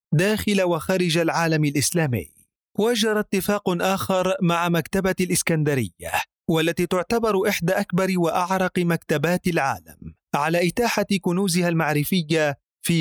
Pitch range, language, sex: 165-195 Hz, Arabic, male